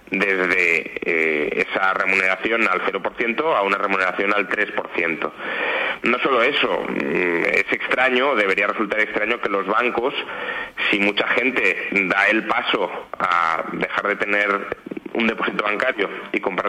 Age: 30-49